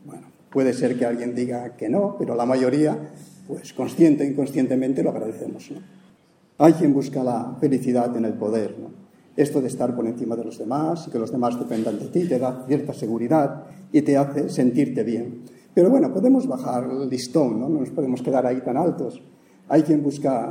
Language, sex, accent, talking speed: English, male, Spanish, 195 wpm